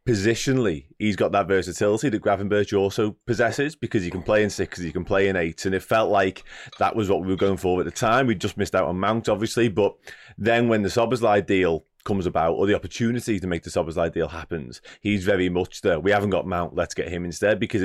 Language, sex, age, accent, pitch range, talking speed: English, male, 20-39, British, 90-115 Hz, 240 wpm